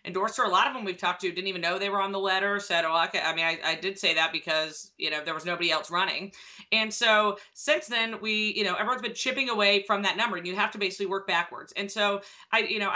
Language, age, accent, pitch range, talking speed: English, 30-49, American, 180-215 Hz, 280 wpm